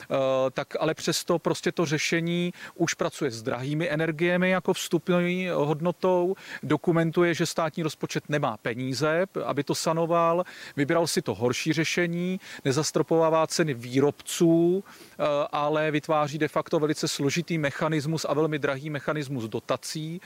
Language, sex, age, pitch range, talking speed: Czech, male, 40-59, 145-170 Hz, 125 wpm